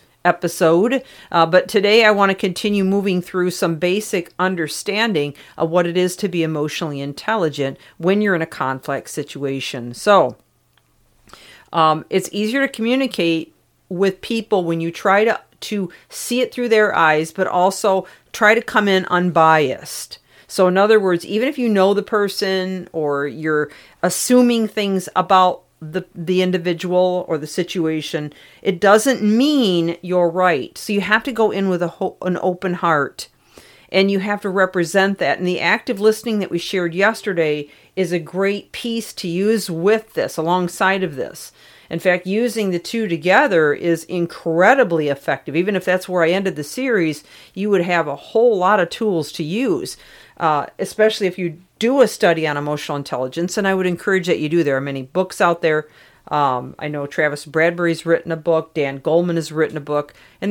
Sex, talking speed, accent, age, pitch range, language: female, 180 wpm, American, 50-69, 160-200 Hz, English